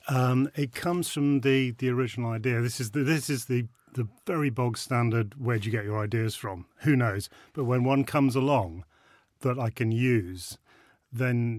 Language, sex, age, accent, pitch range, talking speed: English, male, 40-59, British, 110-130 Hz, 190 wpm